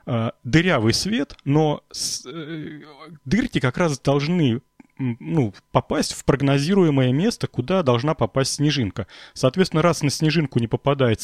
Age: 30-49